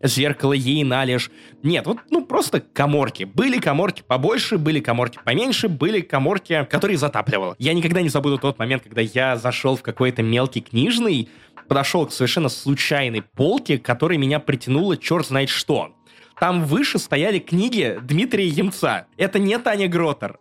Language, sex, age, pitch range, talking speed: Russian, male, 20-39, 130-185 Hz, 155 wpm